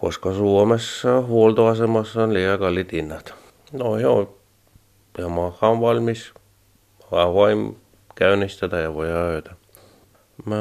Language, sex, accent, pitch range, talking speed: Finnish, male, native, 80-105 Hz, 115 wpm